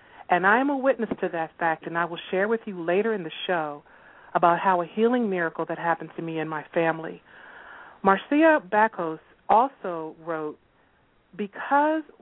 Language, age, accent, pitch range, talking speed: English, 40-59, American, 170-225 Hz, 170 wpm